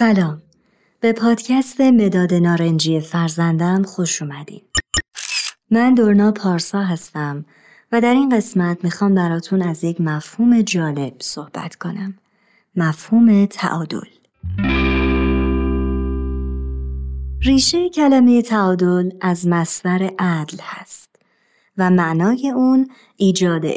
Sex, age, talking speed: male, 30-49, 95 wpm